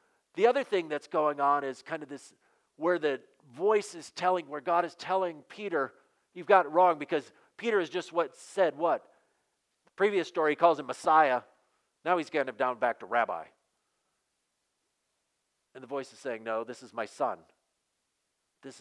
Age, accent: 50-69, American